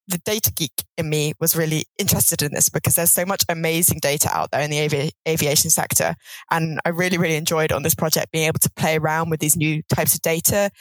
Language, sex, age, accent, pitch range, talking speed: English, female, 10-29, British, 150-175 Hz, 230 wpm